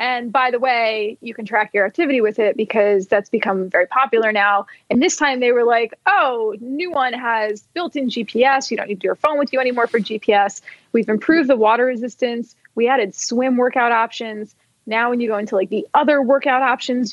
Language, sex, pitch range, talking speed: English, female, 215-255 Hz, 215 wpm